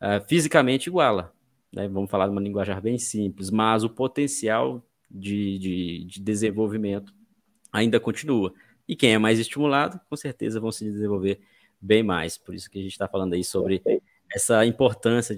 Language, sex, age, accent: Portuguese, male, 20-39, Brazilian